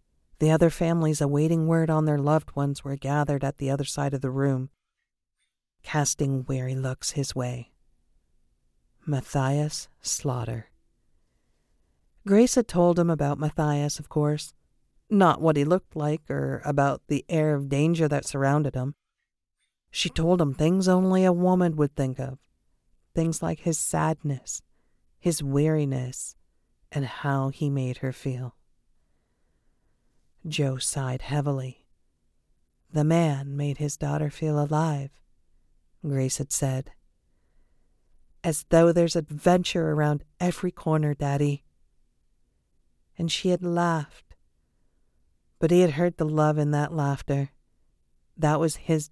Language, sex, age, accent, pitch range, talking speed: English, female, 50-69, American, 135-160 Hz, 130 wpm